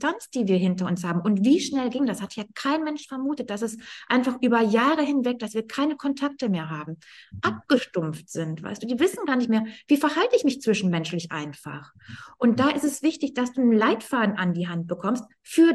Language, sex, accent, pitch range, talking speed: German, female, German, 205-270 Hz, 215 wpm